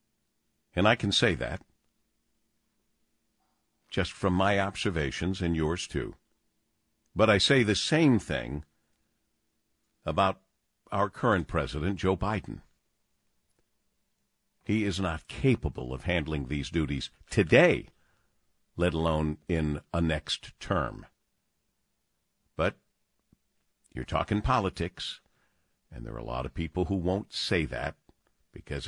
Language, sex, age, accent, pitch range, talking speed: English, male, 50-69, American, 80-105 Hz, 115 wpm